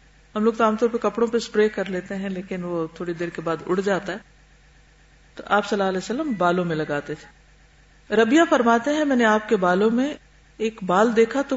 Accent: Indian